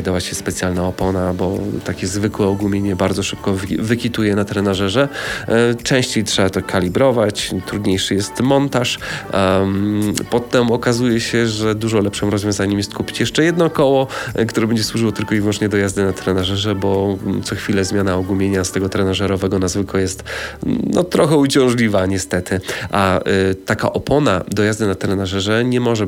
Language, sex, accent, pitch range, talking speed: Polish, male, native, 95-120 Hz, 155 wpm